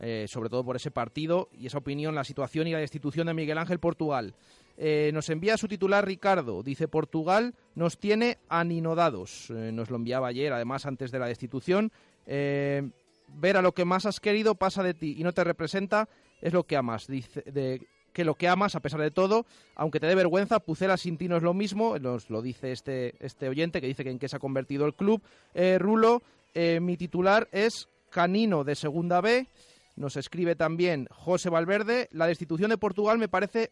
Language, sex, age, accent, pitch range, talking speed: Spanish, male, 30-49, Spanish, 150-200 Hz, 205 wpm